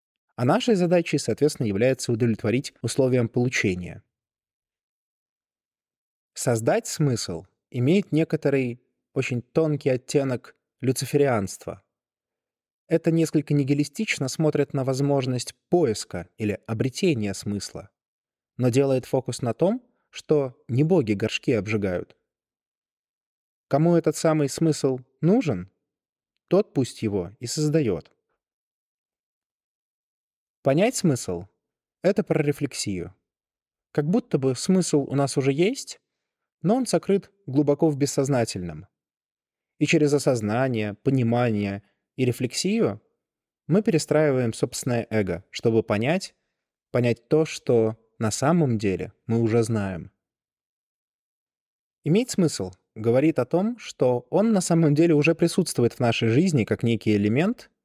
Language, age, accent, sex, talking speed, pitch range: Russian, 20-39, native, male, 110 wpm, 115-155 Hz